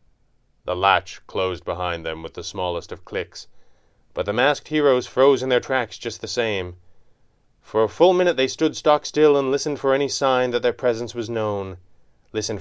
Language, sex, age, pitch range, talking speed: English, male, 30-49, 90-110 Hz, 190 wpm